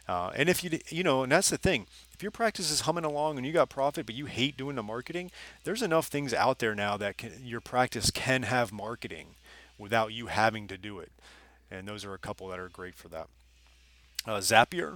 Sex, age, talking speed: male, 30-49, 225 wpm